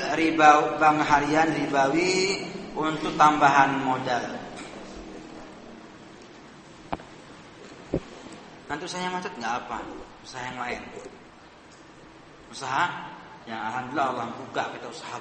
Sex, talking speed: male, 85 wpm